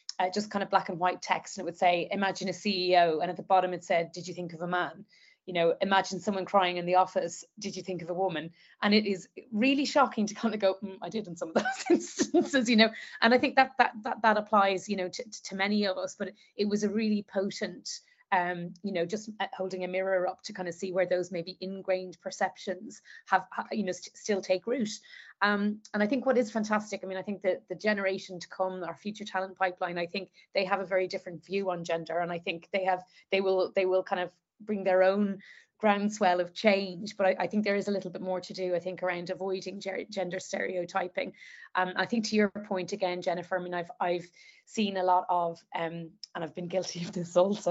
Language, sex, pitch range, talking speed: English, female, 180-205 Hz, 250 wpm